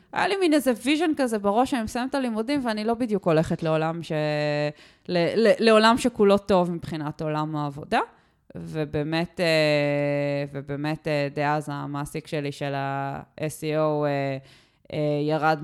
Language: Hebrew